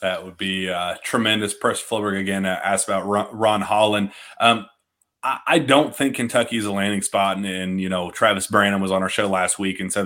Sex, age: male, 30-49